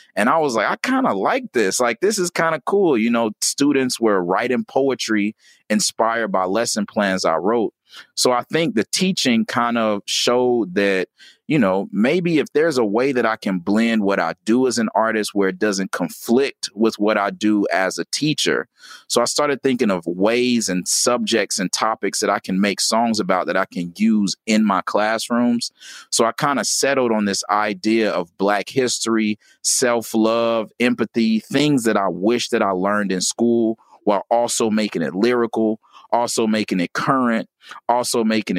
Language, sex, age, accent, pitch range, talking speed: English, male, 30-49, American, 105-120 Hz, 185 wpm